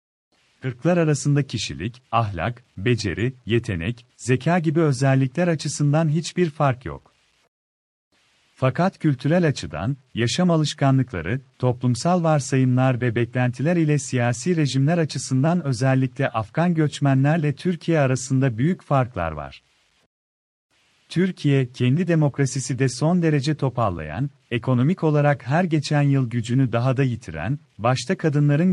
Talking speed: 110 wpm